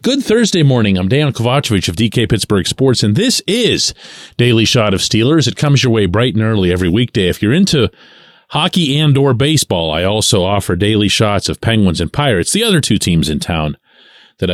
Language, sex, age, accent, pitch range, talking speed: English, male, 40-59, American, 90-130 Hz, 200 wpm